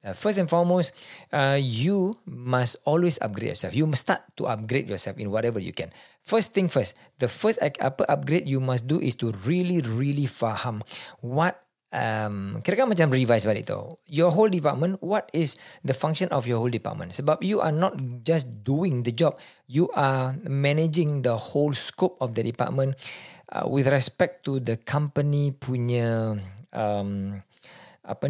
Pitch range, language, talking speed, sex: 115-165 Hz, Malay, 165 wpm, male